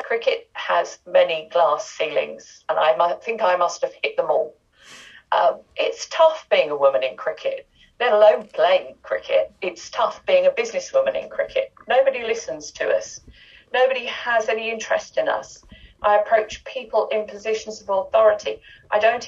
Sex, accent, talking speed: female, British, 160 wpm